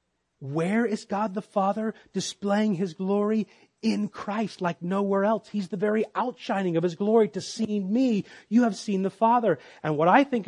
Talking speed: 185 wpm